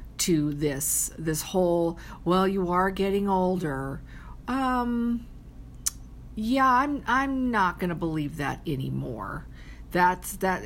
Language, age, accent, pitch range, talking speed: English, 50-69, American, 155-205 Hz, 120 wpm